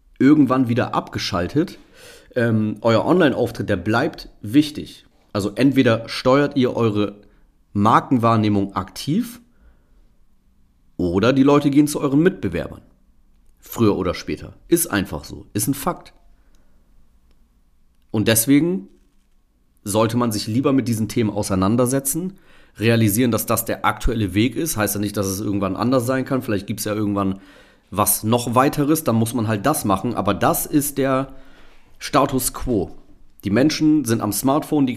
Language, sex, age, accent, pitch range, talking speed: German, male, 40-59, German, 100-125 Hz, 145 wpm